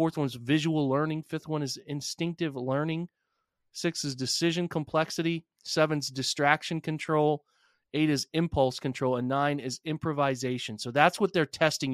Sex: male